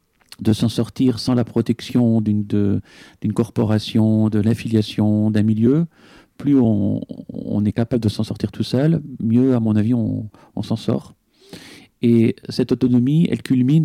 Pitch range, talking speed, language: 105-125 Hz, 160 wpm, French